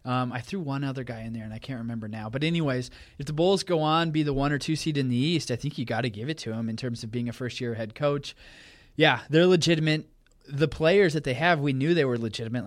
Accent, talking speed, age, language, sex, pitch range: American, 285 wpm, 20-39, English, male, 120-145 Hz